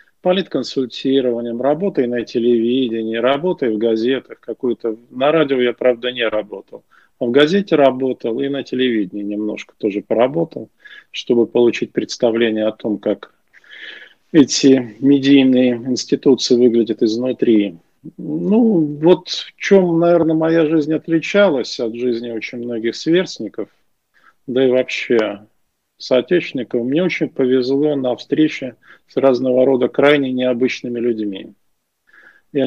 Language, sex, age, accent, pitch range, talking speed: Russian, male, 40-59, native, 120-150 Hz, 115 wpm